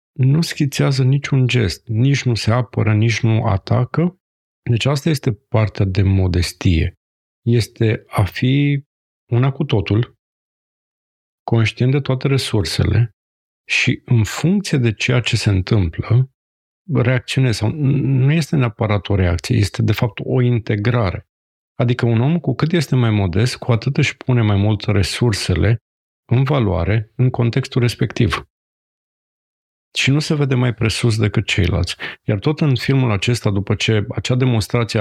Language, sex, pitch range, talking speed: Romanian, male, 105-130 Hz, 140 wpm